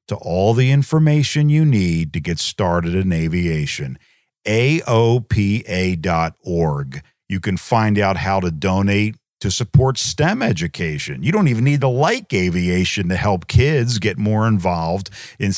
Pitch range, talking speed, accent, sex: 90-125 Hz, 145 wpm, American, male